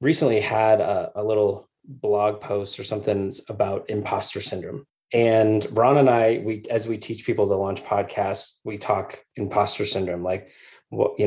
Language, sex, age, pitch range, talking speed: English, male, 20-39, 100-115 Hz, 165 wpm